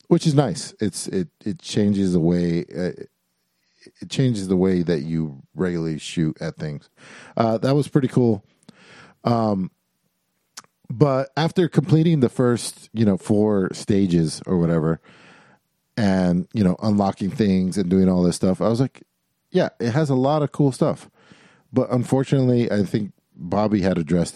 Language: English